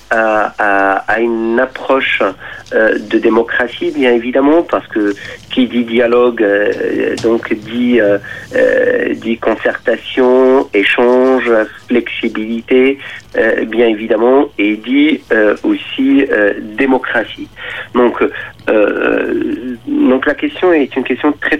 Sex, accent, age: male, French, 50-69